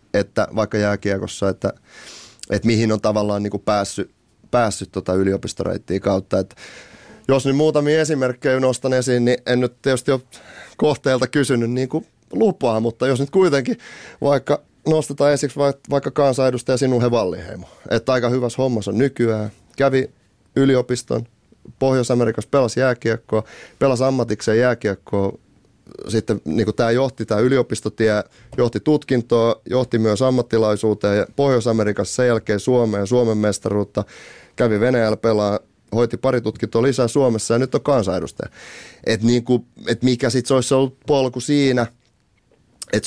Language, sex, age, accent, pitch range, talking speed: Finnish, male, 30-49, native, 110-130 Hz, 135 wpm